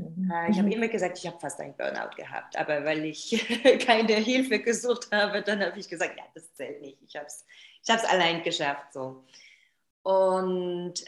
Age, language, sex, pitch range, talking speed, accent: 20-39, German, female, 175-230 Hz, 180 wpm, German